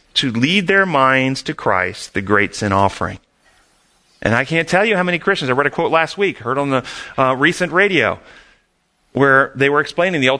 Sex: male